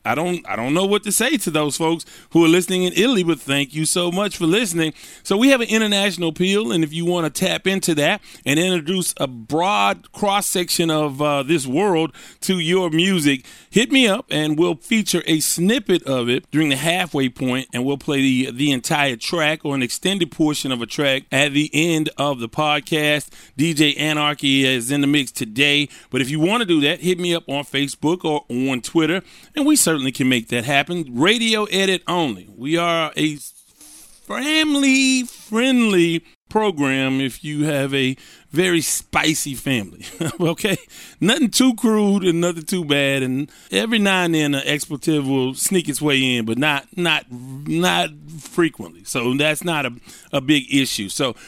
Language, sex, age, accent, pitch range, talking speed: English, male, 30-49, American, 140-180 Hz, 190 wpm